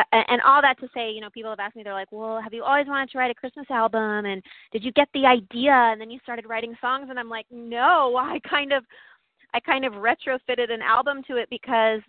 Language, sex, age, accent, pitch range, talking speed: English, female, 20-39, American, 200-235 Hz, 255 wpm